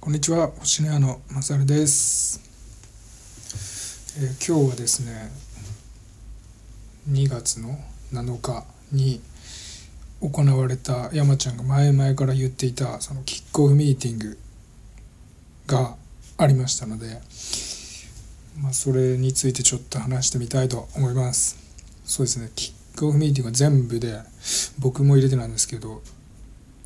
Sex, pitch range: male, 110-135 Hz